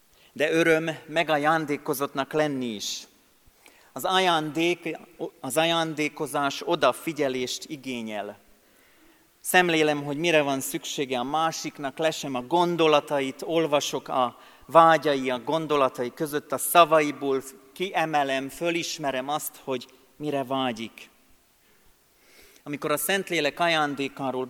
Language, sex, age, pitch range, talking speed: Hungarian, male, 40-59, 135-160 Hz, 95 wpm